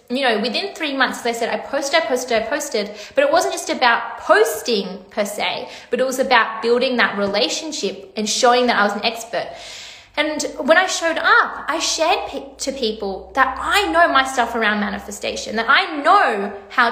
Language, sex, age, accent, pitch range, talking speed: English, female, 20-39, Australian, 225-295 Hz, 195 wpm